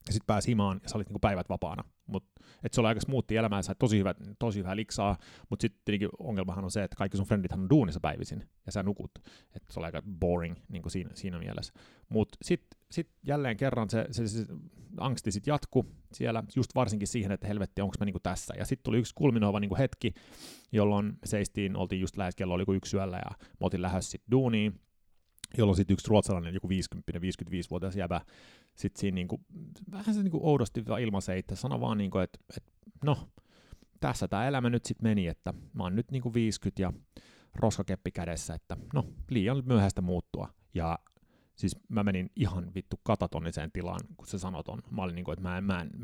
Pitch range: 90-110 Hz